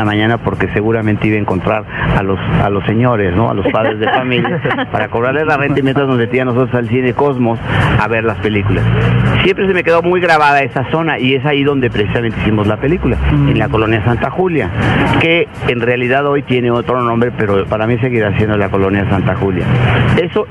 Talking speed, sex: 210 wpm, male